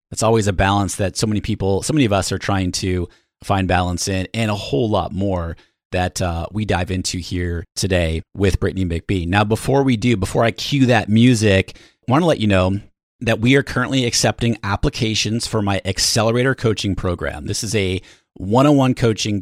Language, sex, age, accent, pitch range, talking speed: English, male, 30-49, American, 95-120 Hz, 200 wpm